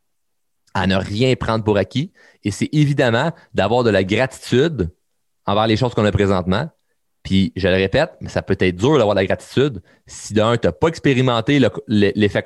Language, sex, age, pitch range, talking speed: French, male, 30-49, 100-125 Hz, 195 wpm